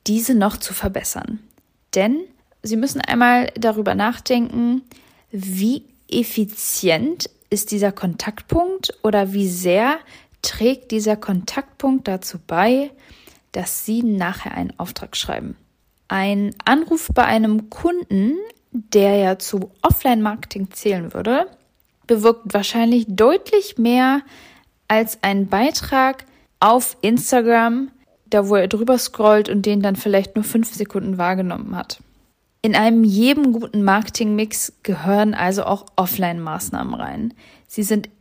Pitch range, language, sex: 205-250 Hz, German, female